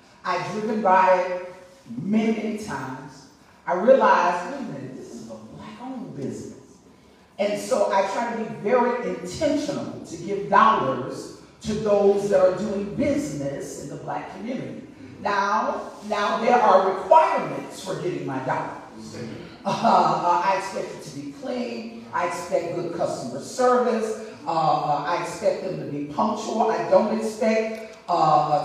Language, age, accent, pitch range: English, 40-59, American, 180-225 Hz